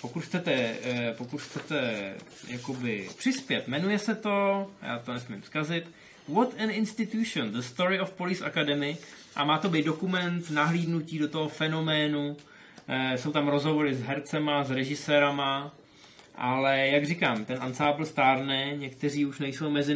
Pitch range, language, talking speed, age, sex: 130-155 Hz, Czech, 140 wpm, 20-39, male